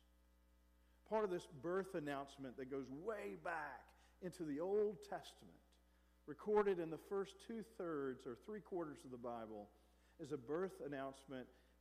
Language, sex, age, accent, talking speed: English, male, 50-69, American, 135 wpm